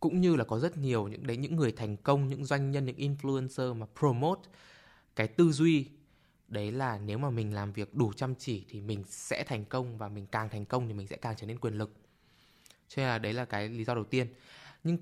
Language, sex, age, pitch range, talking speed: Vietnamese, male, 20-39, 105-140 Hz, 245 wpm